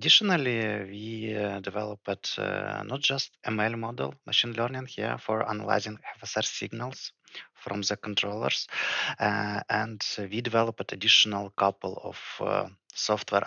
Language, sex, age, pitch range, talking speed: English, male, 20-39, 100-115 Hz, 125 wpm